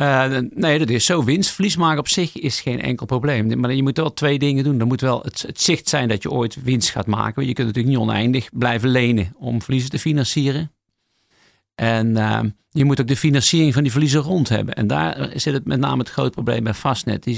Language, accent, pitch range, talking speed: Dutch, Dutch, 115-140 Hz, 240 wpm